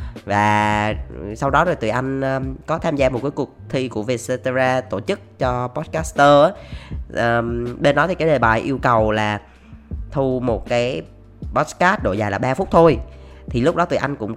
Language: Vietnamese